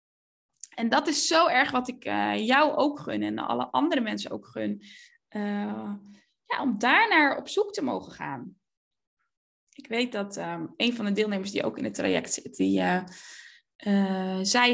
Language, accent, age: Dutch, Dutch, 10-29